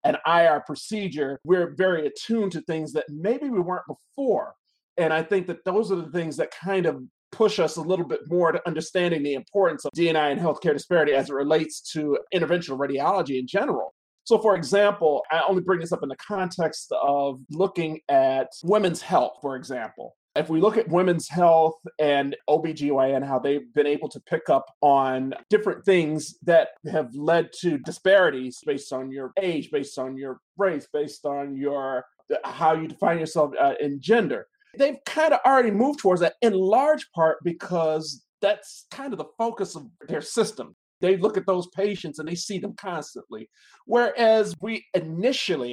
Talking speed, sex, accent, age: 180 wpm, male, American, 30-49